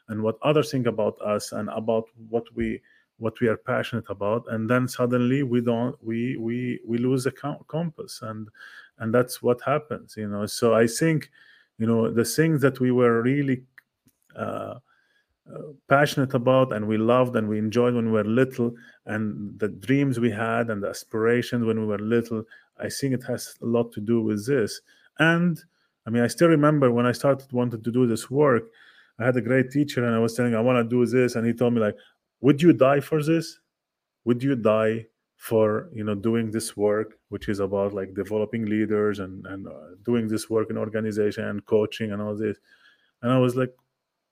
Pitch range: 110-135 Hz